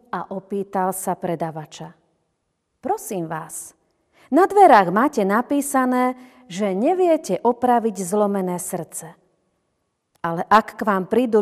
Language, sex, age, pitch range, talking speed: Slovak, female, 40-59, 180-230 Hz, 105 wpm